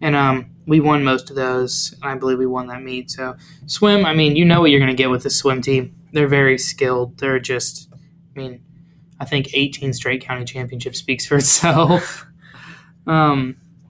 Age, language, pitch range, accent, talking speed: 20-39, English, 130-160 Hz, American, 200 wpm